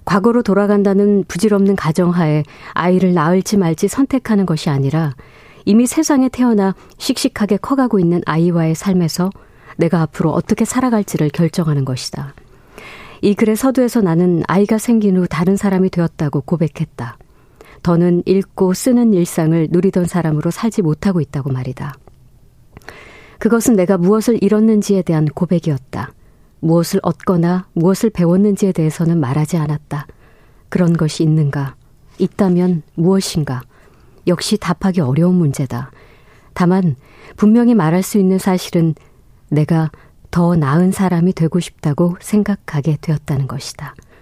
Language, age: Korean, 40-59